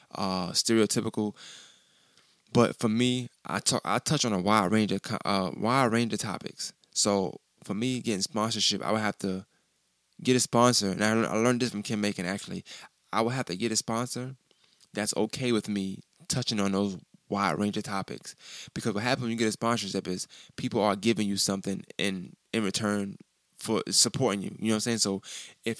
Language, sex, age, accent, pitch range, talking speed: English, male, 20-39, American, 100-115 Hz, 200 wpm